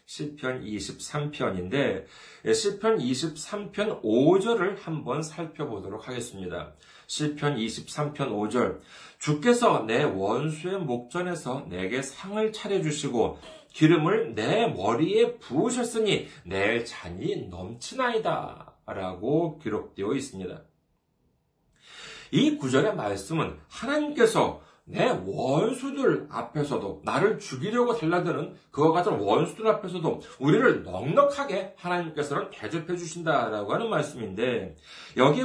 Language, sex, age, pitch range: Korean, male, 40-59, 145-225 Hz